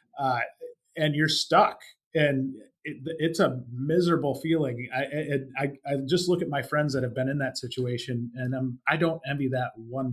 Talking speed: 190 wpm